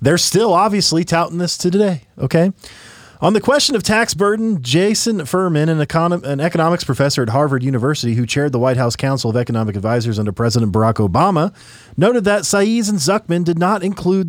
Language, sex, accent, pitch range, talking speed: English, male, American, 125-190 Hz, 185 wpm